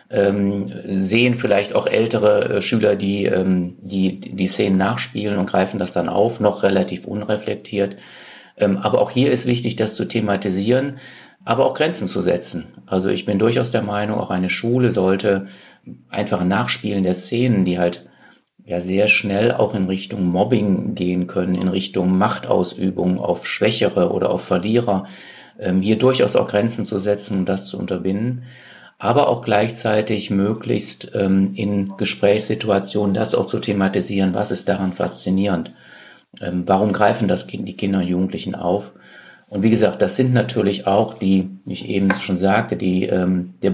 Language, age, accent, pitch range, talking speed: German, 50-69, German, 95-110 Hz, 165 wpm